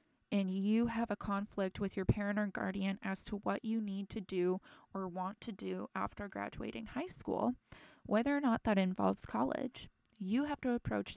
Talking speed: 190 wpm